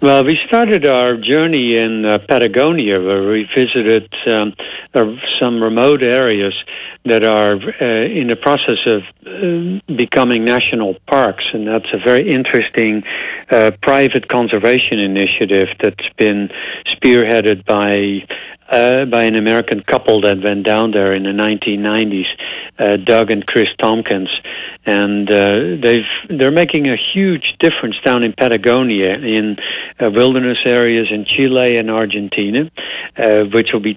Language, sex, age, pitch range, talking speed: English, male, 60-79, 105-130 Hz, 140 wpm